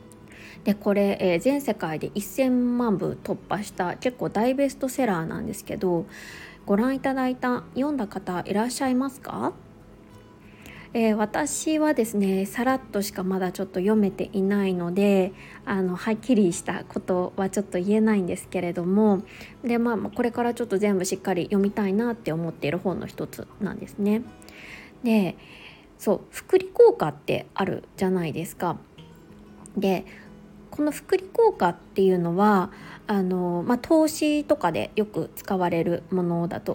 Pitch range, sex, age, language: 185-255 Hz, female, 20-39, Japanese